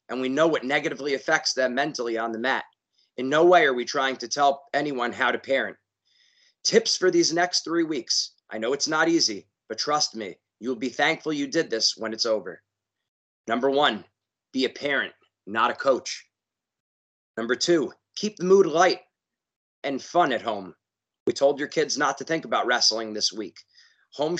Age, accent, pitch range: 30-49, American, 125-155 Hz